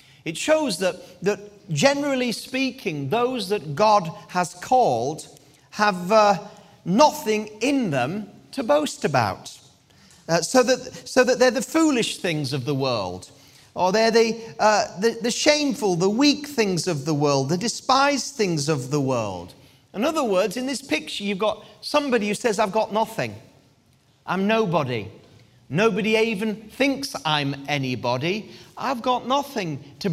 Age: 40-59